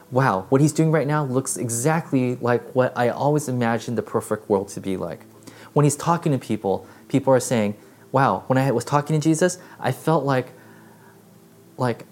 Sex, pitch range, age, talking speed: male, 115-150 Hz, 20-39, 190 wpm